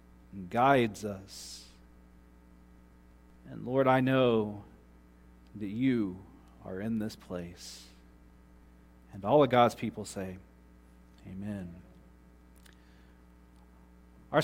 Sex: male